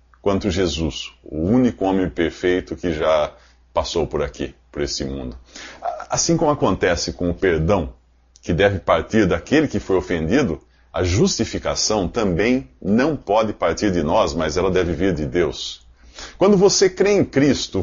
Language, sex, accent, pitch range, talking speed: Portuguese, male, Brazilian, 85-135 Hz, 155 wpm